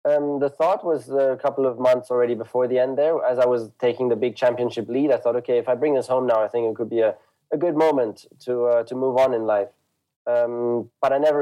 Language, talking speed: English, 265 wpm